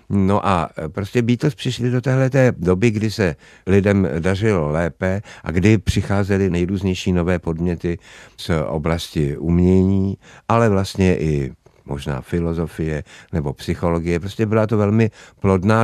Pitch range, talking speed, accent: 85-100 Hz, 130 wpm, native